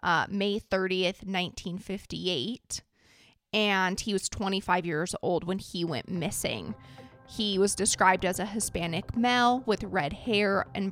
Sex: female